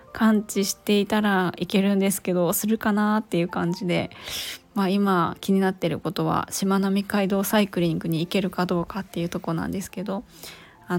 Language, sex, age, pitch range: Japanese, female, 20-39, 180-210 Hz